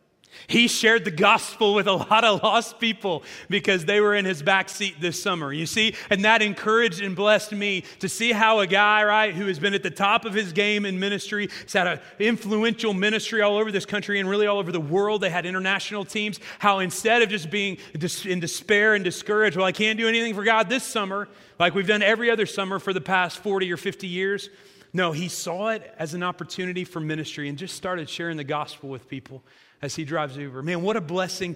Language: English